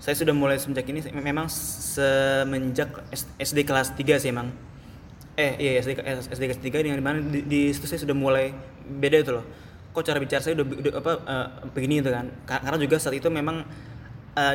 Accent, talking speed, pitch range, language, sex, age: native, 190 wpm, 130-150 Hz, Indonesian, male, 20-39